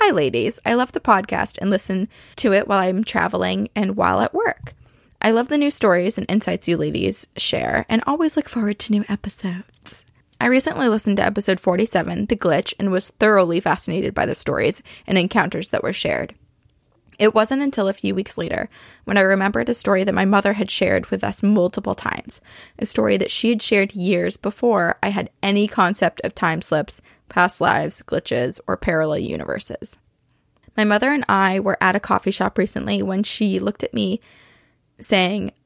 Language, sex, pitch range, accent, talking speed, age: English, female, 185-225 Hz, American, 190 wpm, 20-39